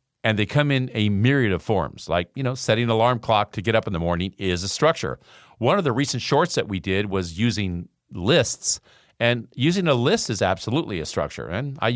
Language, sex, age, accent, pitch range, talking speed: English, male, 50-69, American, 100-140 Hz, 225 wpm